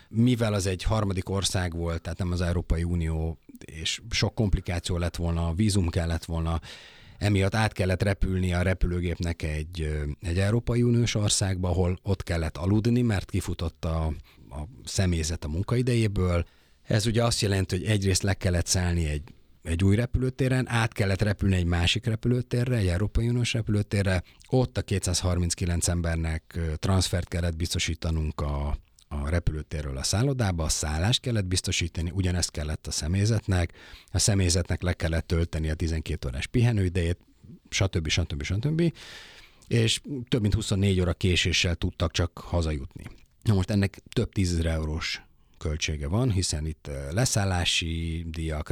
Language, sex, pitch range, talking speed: Hungarian, male, 80-105 Hz, 145 wpm